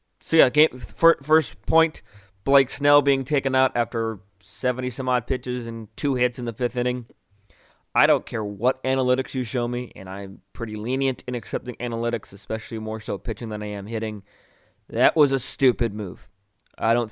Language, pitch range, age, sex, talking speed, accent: English, 110-135 Hz, 20-39, male, 180 wpm, American